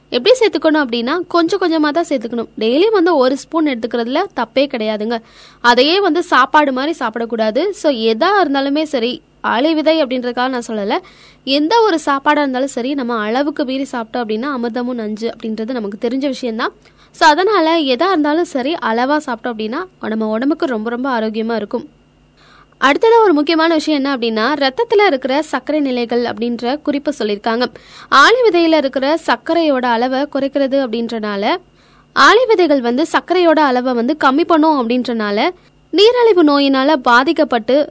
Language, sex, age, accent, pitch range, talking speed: Tamil, female, 20-39, native, 245-325 Hz, 140 wpm